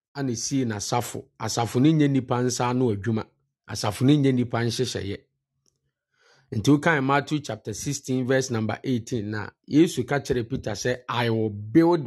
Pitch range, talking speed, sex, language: 115-140 Hz, 155 wpm, male, English